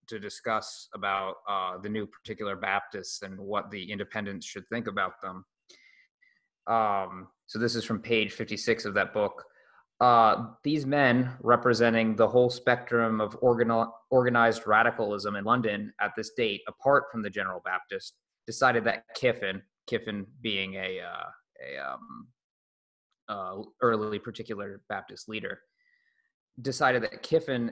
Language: English